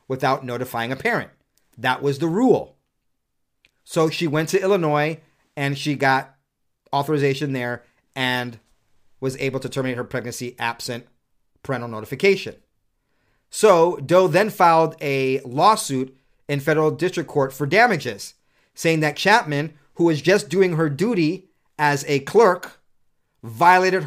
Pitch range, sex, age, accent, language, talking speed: 135-165 Hz, male, 40-59, American, English, 130 wpm